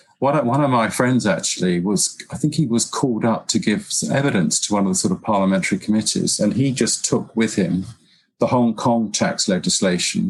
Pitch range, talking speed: 100-120 Hz, 205 wpm